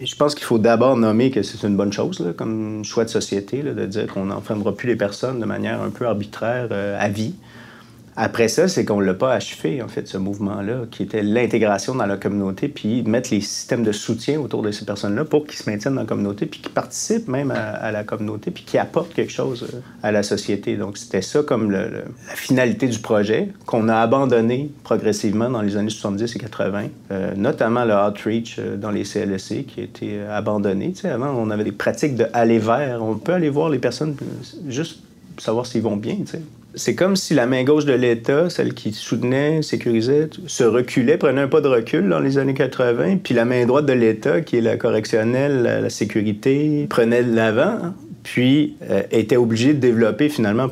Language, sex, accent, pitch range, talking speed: French, male, Canadian, 105-130 Hz, 215 wpm